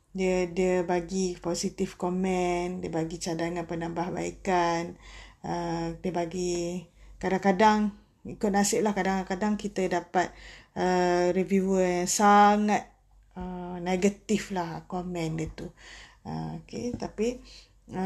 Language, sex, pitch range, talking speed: Malay, female, 180-210 Hz, 110 wpm